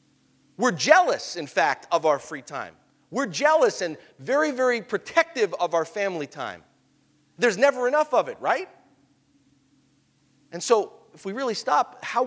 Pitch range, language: 140-230 Hz, English